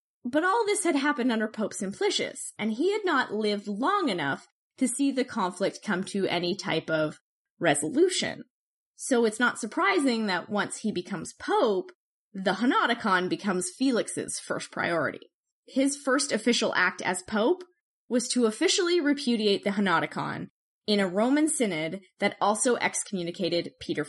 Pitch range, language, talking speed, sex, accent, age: 190-270 Hz, English, 150 wpm, female, American, 20-39